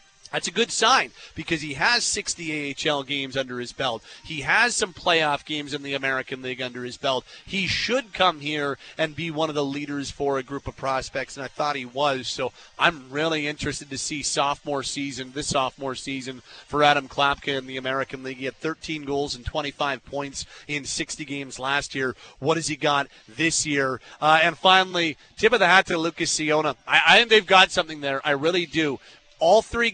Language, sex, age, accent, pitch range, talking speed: English, male, 30-49, American, 140-185 Hz, 205 wpm